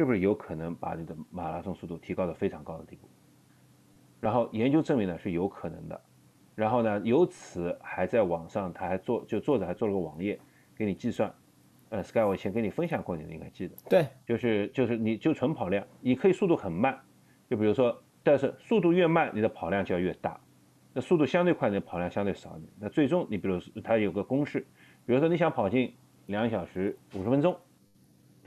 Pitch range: 85-135 Hz